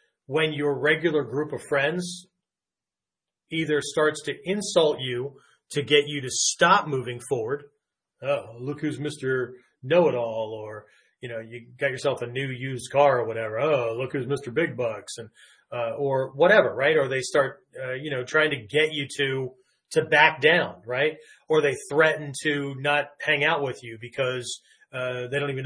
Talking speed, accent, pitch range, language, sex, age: 175 wpm, American, 130-170 Hz, English, male, 30-49